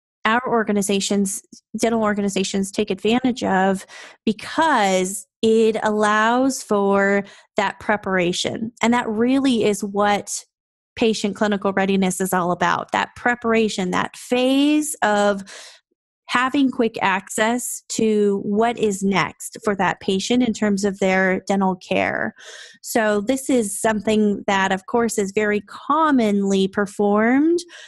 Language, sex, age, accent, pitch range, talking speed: English, female, 20-39, American, 195-230 Hz, 120 wpm